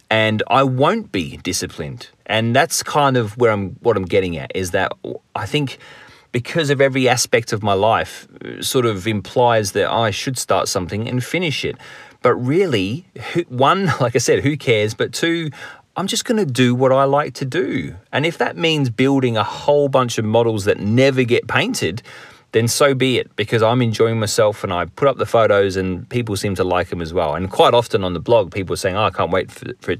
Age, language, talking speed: 30-49, English, 215 wpm